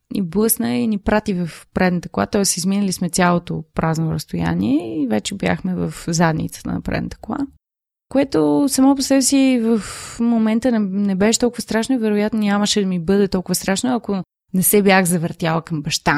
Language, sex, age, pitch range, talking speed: Bulgarian, female, 20-39, 175-220 Hz, 180 wpm